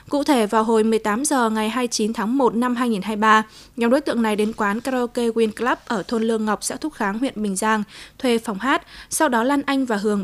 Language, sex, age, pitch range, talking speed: Vietnamese, female, 20-39, 210-245 Hz, 235 wpm